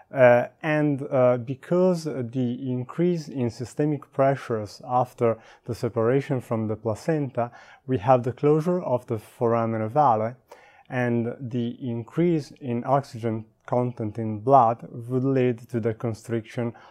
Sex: male